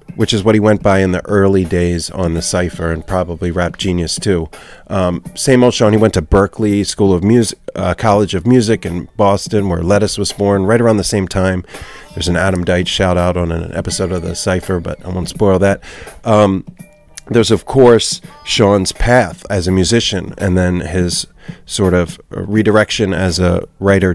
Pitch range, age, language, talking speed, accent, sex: 90-110 Hz, 30-49, English, 195 wpm, American, male